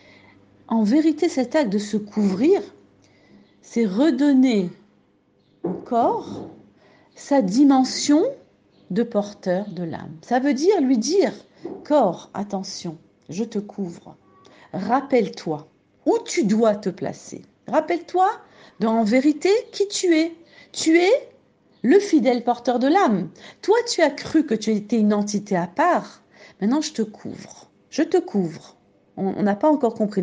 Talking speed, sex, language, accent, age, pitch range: 140 wpm, female, French, French, 50-69, 195-300 Hz